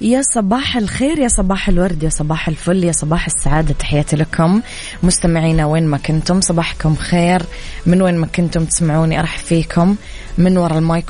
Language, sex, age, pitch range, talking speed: Arabic, female, 20-39, 160-180 Hz, 160 wpm